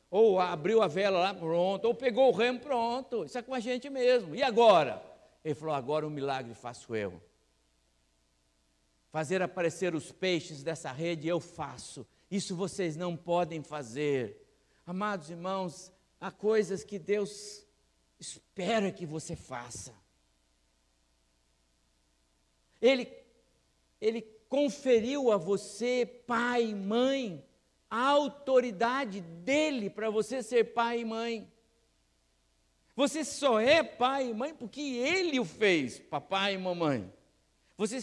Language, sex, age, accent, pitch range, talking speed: Portuguese, male, 60-79, Brazilian, 155-235 Hz, 130 wpm